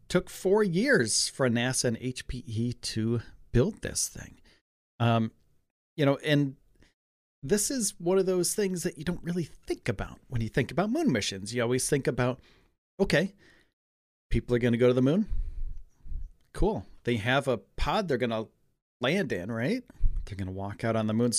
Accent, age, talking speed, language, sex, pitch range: American, 40-59, 180 wpm, English, male, 110-165 Hz